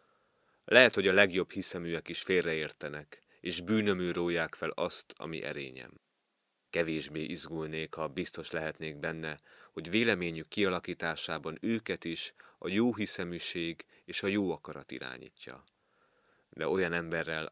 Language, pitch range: Hungarian, 80-95 Hz